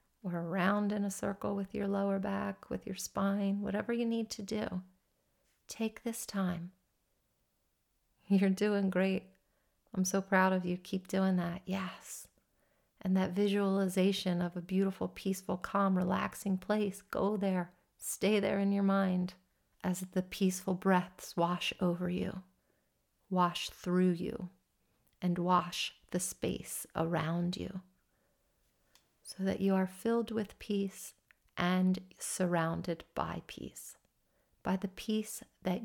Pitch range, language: 180-205 Hz, English